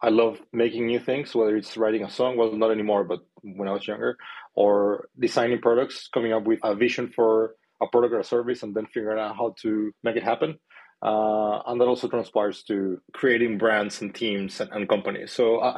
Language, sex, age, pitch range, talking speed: English, male, 30-49, 105-120 Hz, 215 wpm